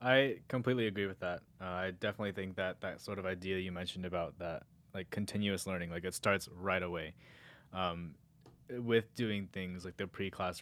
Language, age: English, 20-39